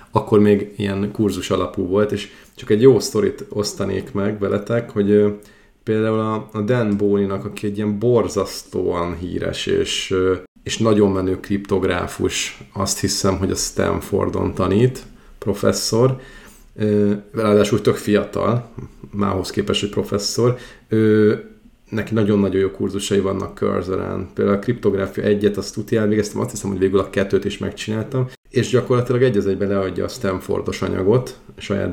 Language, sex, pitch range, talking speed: Hungarian, male, 95-110 Hz, 145 wpm